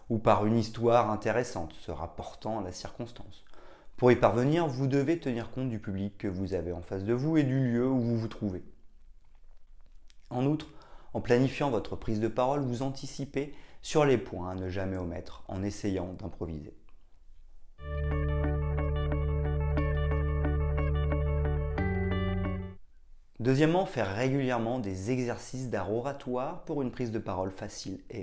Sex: male